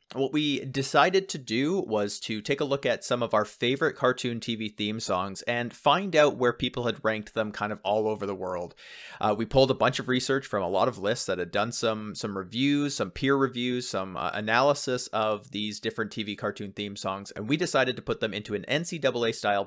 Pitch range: 105-135 Hz